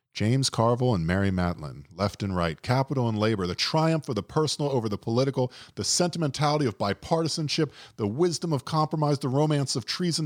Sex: male